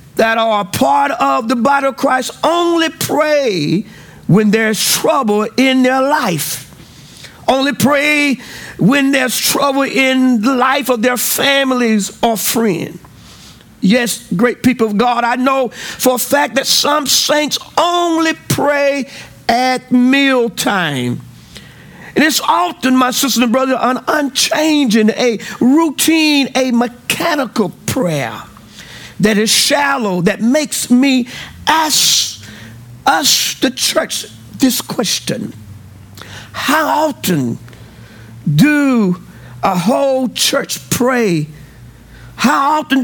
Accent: American